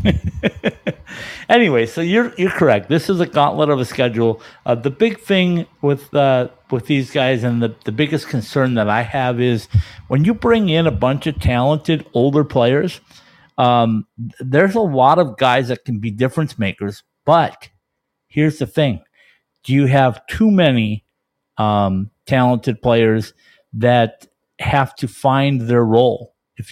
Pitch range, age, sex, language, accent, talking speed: 120-165 Hz, 50-69, male, English, American, 155 wpm